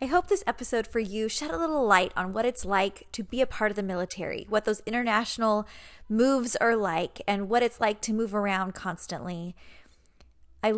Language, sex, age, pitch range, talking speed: English, female, 20-39, 190-225 Hz, 200 wpm